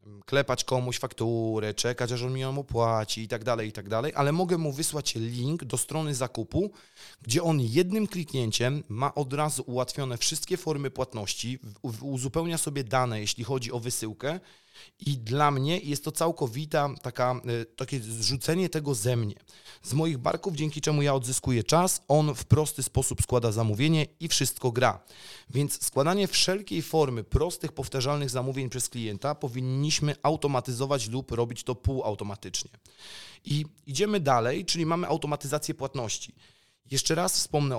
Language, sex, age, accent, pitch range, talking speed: Polish, male, 30-49, native, 120-150 Hz, 150 wpm